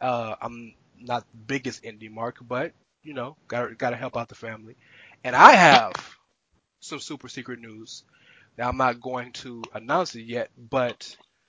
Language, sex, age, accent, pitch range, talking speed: English, male, 20-39, American, 115-130 Hz, 165 wpm